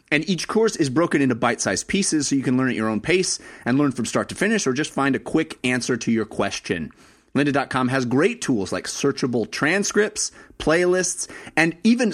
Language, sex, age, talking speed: English, male, 30-49, 205 wpm